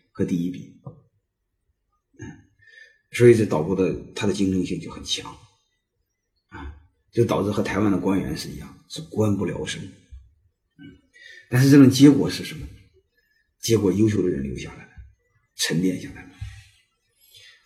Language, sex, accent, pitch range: Chinese, male, native, 95-120 Hz